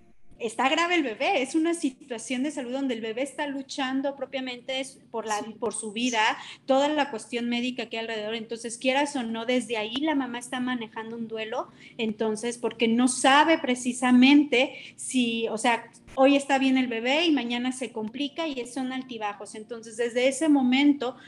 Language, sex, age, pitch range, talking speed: Spanish, female, 30-49, 230-270 Hz, 180 wpm